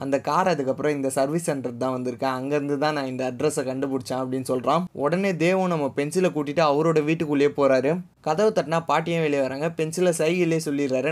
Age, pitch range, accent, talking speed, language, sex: 20-39, 135-165 Hz, native, 175 wpm, Tamil, male